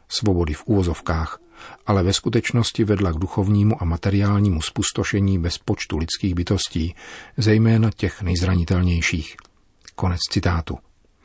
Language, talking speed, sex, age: Czech, 110 wpm, male, 40-59